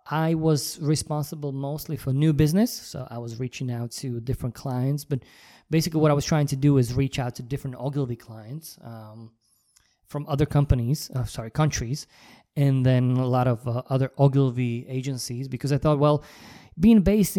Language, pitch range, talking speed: English, 125-150 Hz, 180 wpm